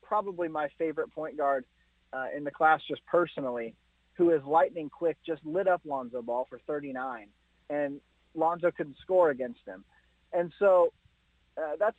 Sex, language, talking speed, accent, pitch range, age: male, English, 160 wpm, American, 150-185 Hz, 30-49